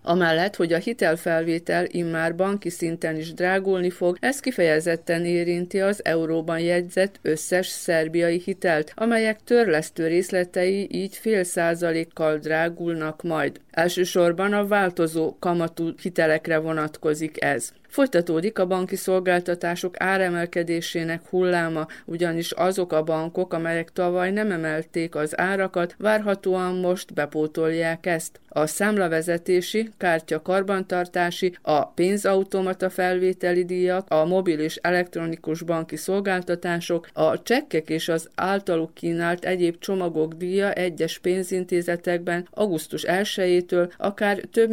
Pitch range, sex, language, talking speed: 165-190 Hz, female, Hungarian, 110 wpm